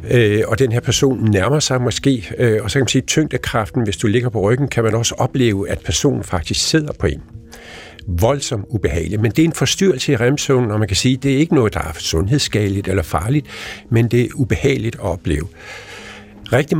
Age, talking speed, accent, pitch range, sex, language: 50-69, 210 wpm, native, 100-135 Hz, male, Danish